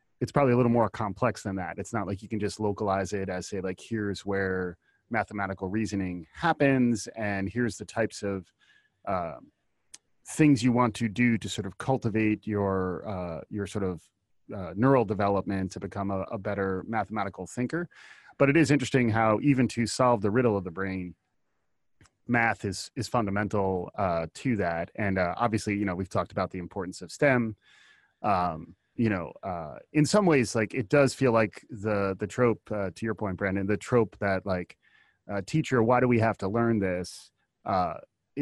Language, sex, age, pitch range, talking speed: English, male, 30-49, 95-115 Hz, 185 wpm